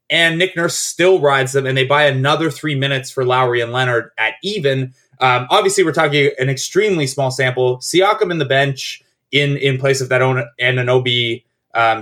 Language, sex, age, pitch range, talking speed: English, male, 20-39, 125-150 Hz, 200 wpm